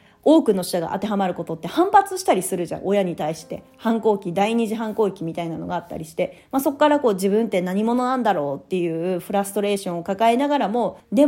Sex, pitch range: female, 180-235 Hz